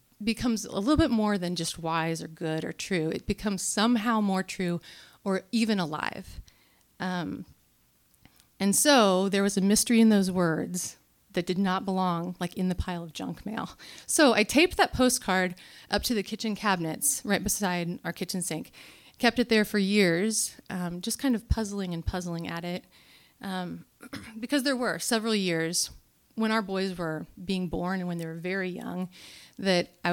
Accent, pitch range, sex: American, 180-220 Hz, female